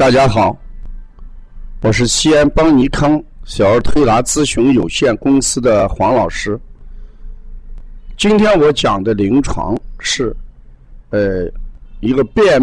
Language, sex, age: Chinese, male, 50-69